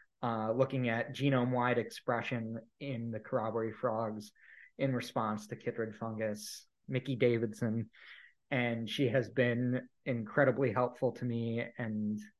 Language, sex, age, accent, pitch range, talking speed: English, male, 20-39, American, 115-135 Hz, 120 wpm